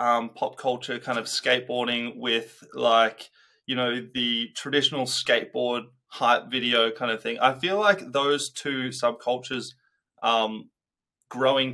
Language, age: English, 20-39